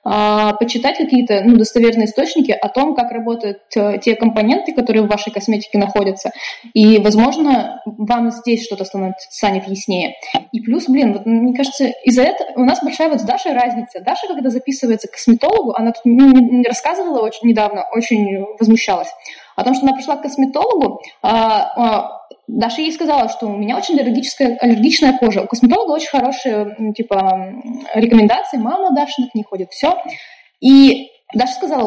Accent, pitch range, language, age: native, 225-275 Hz, Russian, 20-39